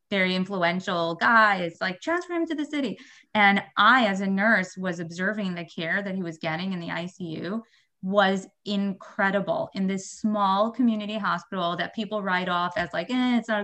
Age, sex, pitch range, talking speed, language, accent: 20-39, female, 180-215 Hz, 185 wpm, English, American